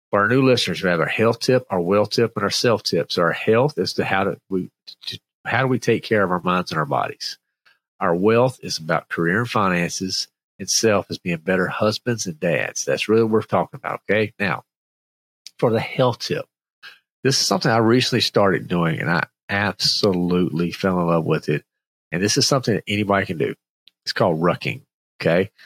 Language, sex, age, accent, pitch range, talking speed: English, male, 40-59, American, 90-120 Hz, 205 wpm